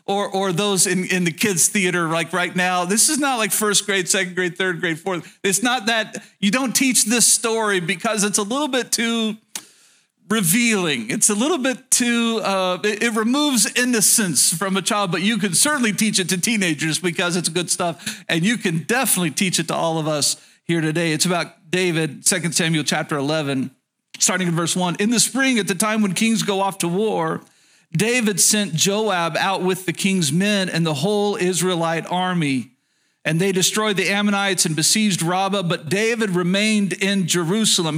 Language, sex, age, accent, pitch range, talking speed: English, male, 40-59, American, 180-220 Hz, 190 wpm